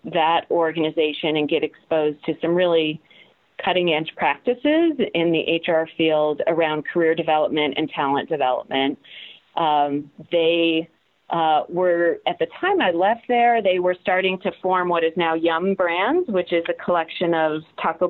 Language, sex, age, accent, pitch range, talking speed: English, female, 40-59, American, 160-185 Hz, 155 wpm